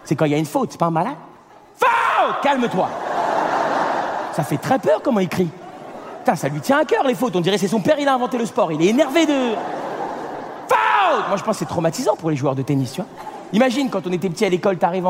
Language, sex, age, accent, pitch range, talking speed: French, male, 40-59, French, 175-285 Hz, 255 wpm